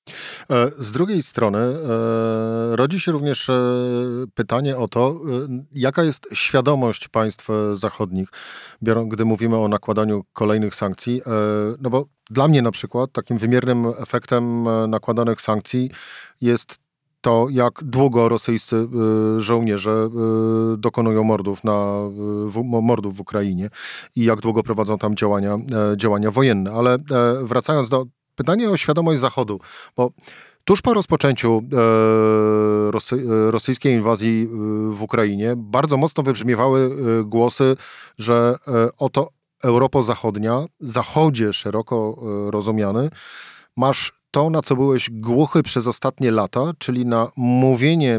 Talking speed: 110 wpm